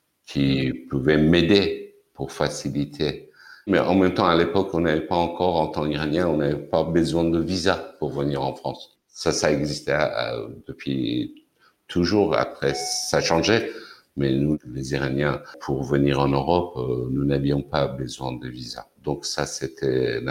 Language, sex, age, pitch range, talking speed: French, male, 60-79, 75-100 Hz, 160 wpm